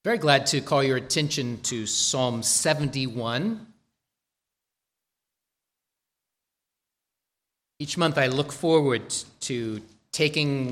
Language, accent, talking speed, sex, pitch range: English, American, 90 wpm, male, 115-150 Hz